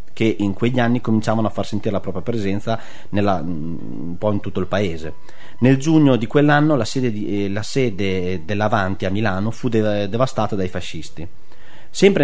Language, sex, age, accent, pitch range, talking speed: Italian, male, 30-49, native, 100-130 Hz, 155 wpm